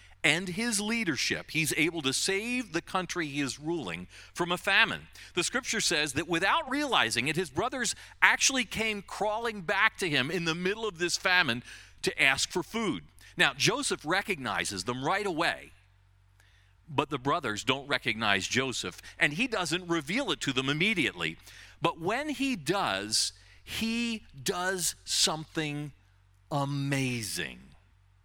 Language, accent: English, American